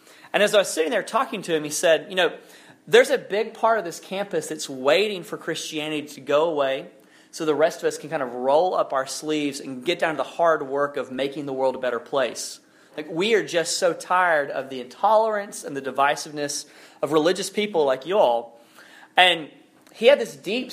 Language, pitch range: English, 145-195 Hz